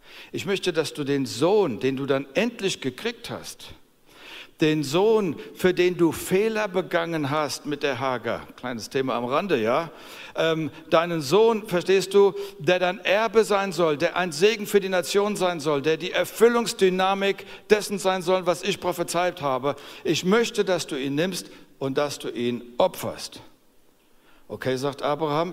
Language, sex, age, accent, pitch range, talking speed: German, male, 60-79, German, 130-185 Hz, 165 wpm